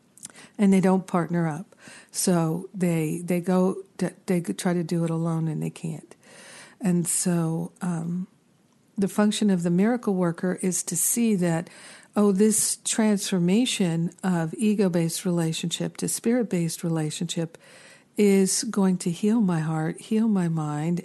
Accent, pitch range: American, 170-210 Hz